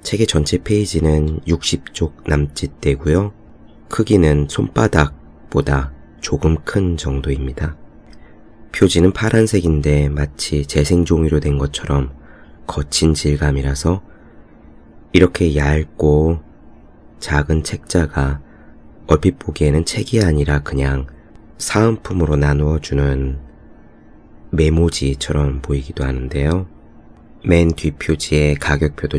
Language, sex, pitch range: Korean, male, 75-85 Hz